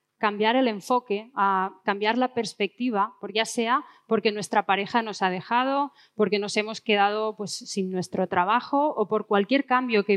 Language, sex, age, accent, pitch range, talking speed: Spanish, female, 20-39, Spanish, 200-235 Hz, 165 wpm